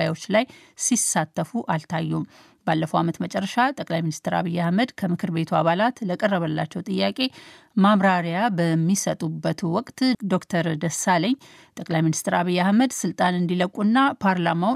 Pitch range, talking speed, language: 170-215 Hz, 110 wpm, Amharic